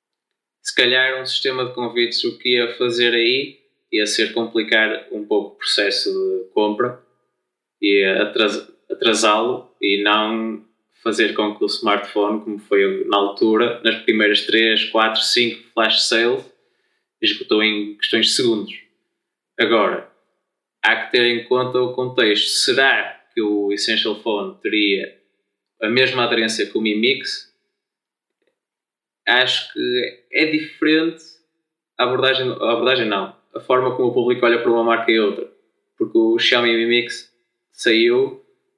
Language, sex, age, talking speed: Portuguese, male, 20-39, 140 wpm